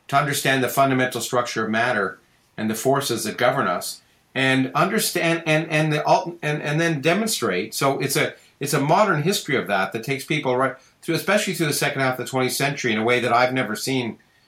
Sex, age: male, 50-69